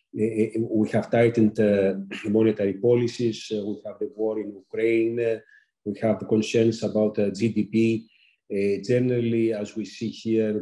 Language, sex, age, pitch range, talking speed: English, male, 40-59, 105-120 Hz, 155 wpm